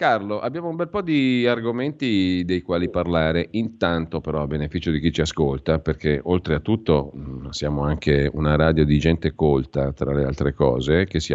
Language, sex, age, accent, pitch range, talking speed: Italian, male, 40-59, native, 75-95 Hz, 185 wpm